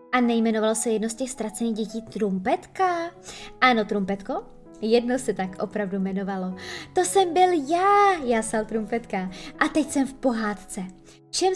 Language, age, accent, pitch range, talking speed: Czech, 20-39, native, 210-280 Hz, 145 wpm